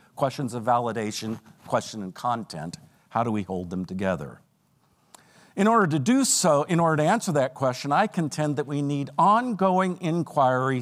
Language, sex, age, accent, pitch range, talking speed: English, male, 50-69, American, 130-180 Hz, 165 wpm